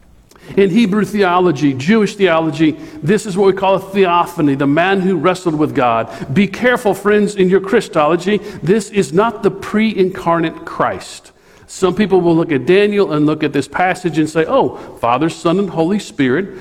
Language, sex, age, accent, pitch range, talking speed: English, male, 50-69, American, 145-190 Hz, 175 wpm